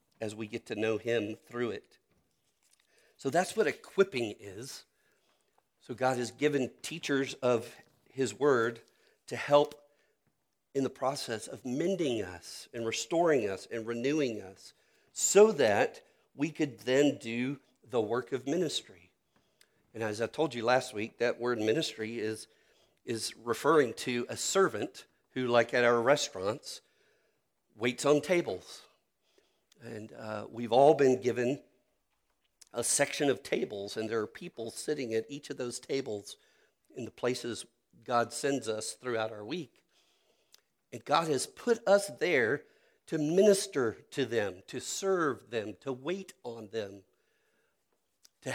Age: 40-59